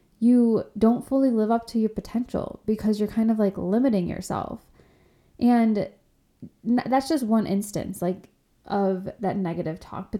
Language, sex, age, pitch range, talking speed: English, female, 10-29, 190-225 Hz, 155 wpm